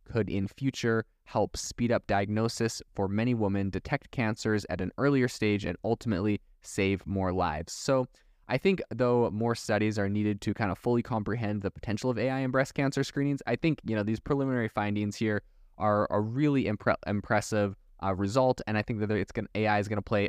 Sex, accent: male, American